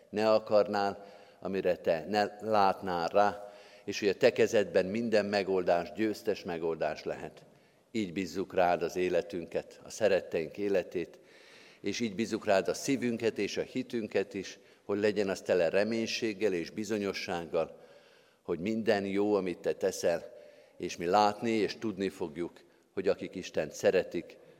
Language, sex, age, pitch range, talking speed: Hungarian, male, 50-69, 100-115 Hz, 140 wpm